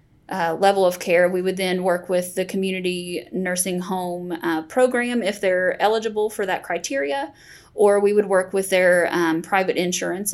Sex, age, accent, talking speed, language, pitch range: female, 10-29, American, 175 wpm, English, 170-190 Hz